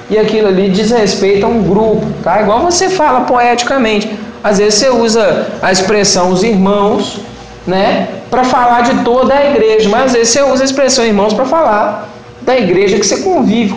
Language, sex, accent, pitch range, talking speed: Portuguese, male, Brazilian, 180-235 Hz, 185 wpm